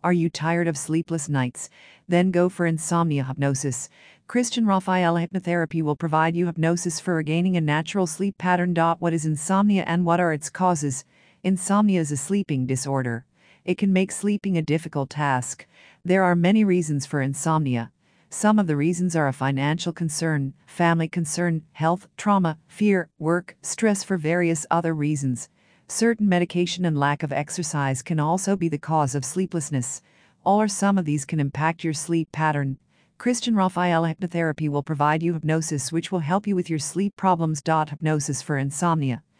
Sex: female